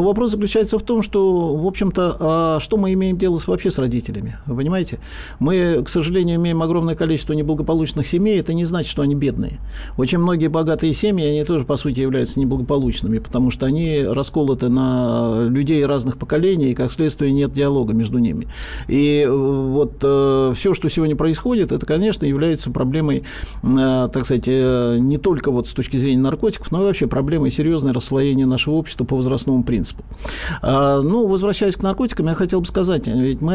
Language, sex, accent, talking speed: Russian, male, native, 170 wpm